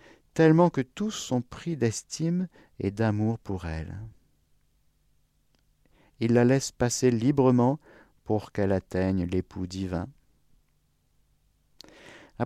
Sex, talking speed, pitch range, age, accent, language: male, 100 wpm, 95-130 Hz, 50-69, French, French